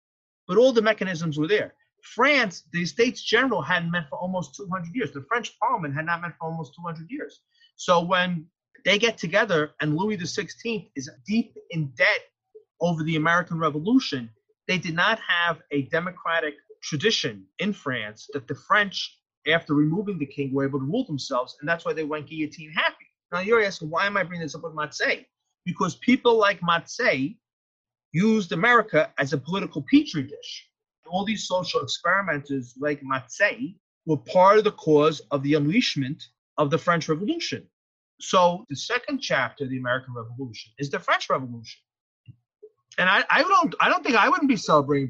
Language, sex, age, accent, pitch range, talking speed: English, male, 30-49, American, 150-220 Hz, 175 wpm